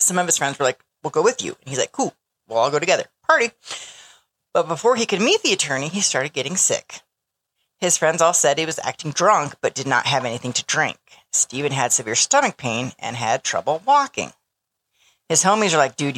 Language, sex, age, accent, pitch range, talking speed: English, female, 40-59, American, 140-195 Hz, 220 wpm